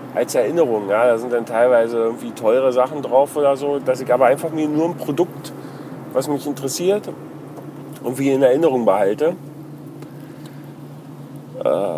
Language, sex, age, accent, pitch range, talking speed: German, male, 40-59, German, 125-150 Hz, 145 wpm